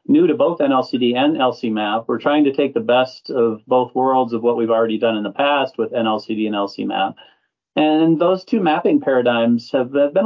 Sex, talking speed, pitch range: male, 200 wpm, 110-135 Hz